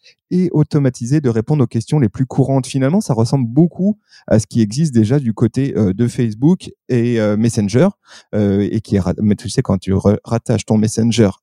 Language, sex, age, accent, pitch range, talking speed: French, male, 30-49, French, 110-140 Hz, 170 wpm